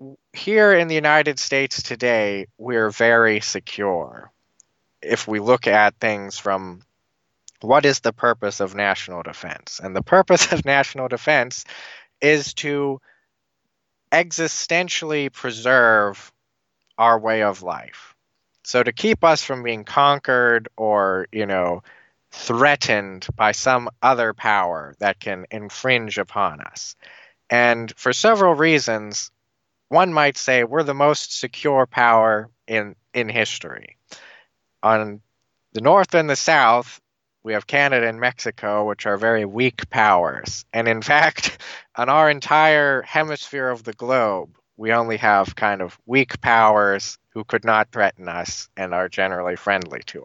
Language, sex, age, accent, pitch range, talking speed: English, male, 20-39, American, 105-140 Hz, 135 wpm